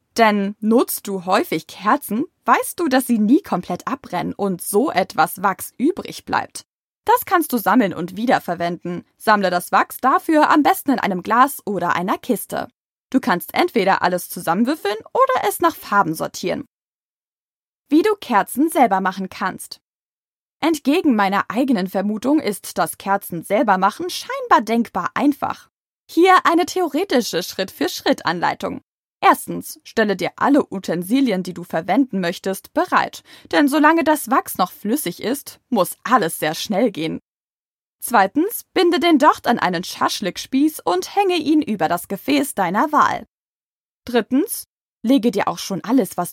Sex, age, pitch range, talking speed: female, 20-39, 190-300 Hz, 145 wpm